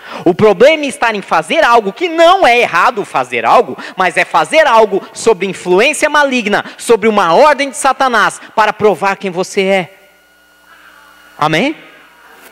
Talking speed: 150 wpm